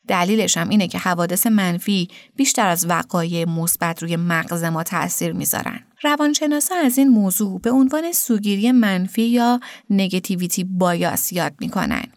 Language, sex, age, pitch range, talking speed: Persian, female, 30-49, 185-260 Hz, 140 wpm